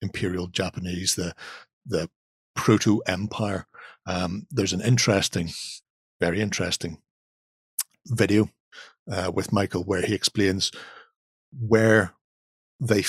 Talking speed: 95 wpm